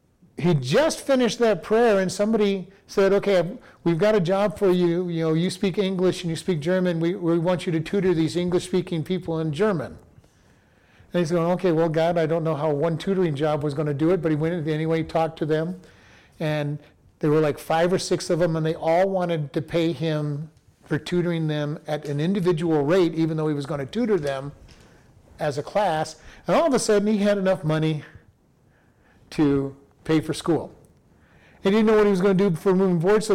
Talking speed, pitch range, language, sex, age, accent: 220 wpm, 155-195 Hz, English, male, 50-69, American